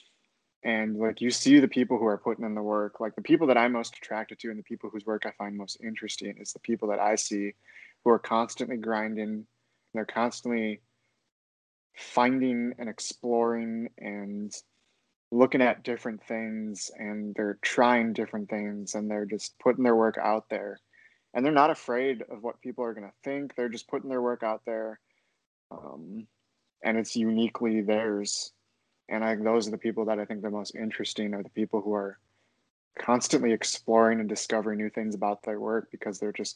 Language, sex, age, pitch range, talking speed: English, male, 20-39, 105-120 Hz, 190 wpm